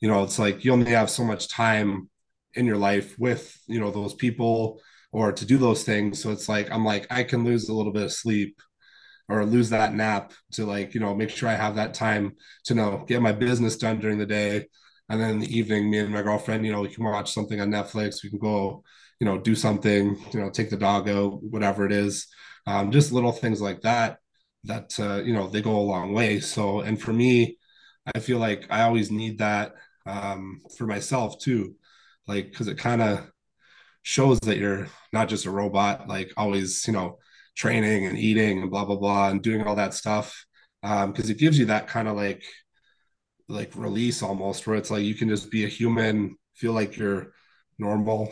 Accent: American